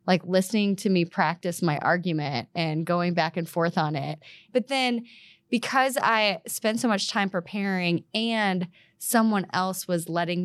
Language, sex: English, female